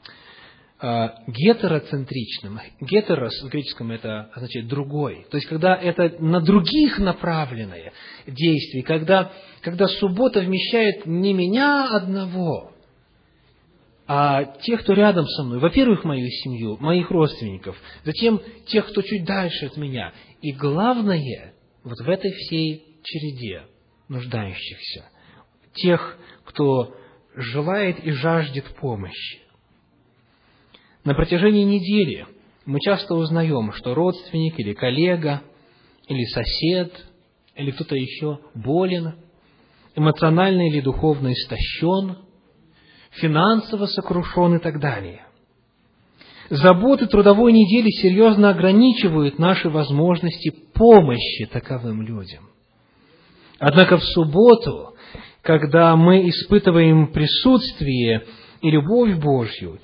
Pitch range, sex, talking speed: 130-190 Hz, male, 95 wpm